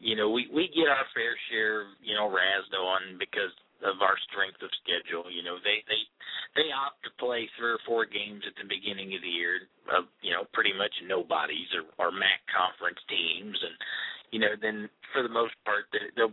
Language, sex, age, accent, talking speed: English, male, 40-59, American, 210 wpm